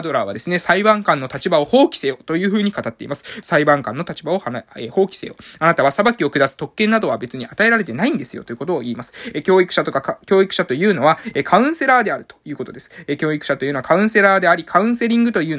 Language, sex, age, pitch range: Japanese, male, 20-39, 140-195 Hz